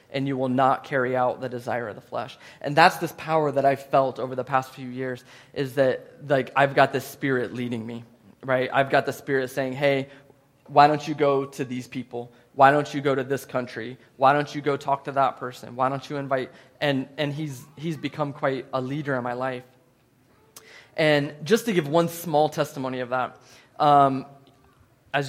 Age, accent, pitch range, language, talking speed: 20-39, American, 125-145 Hz, English, 205 wpm